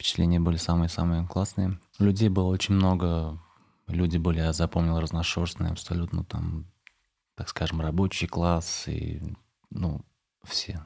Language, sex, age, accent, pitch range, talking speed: Russian, male, 20-39, native, 80-95 Hz, 115 wpm